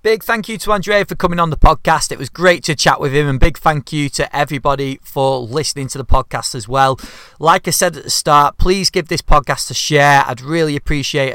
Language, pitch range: English, 130-160 Hz